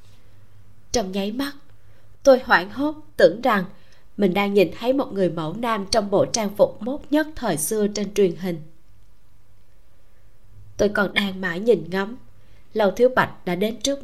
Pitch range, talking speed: 155-230 Hz, 165 wpm